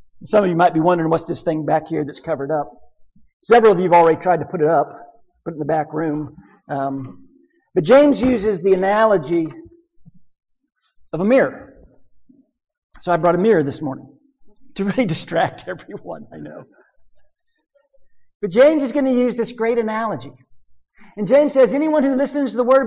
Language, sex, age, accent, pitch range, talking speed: English, male, 50-69, American, 175-275 Hz, 185 wpm